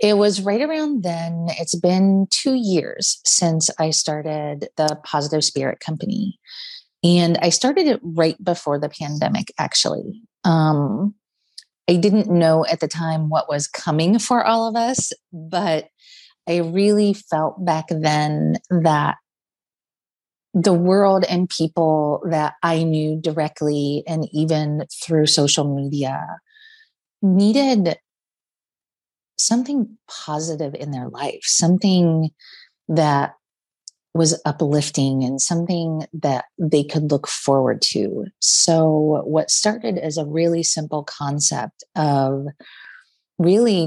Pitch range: 150-180 Hz